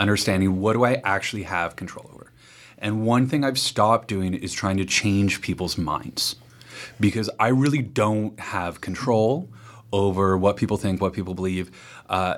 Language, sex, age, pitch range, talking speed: English, male, 30-49, 100-125 Hz, 165 wpm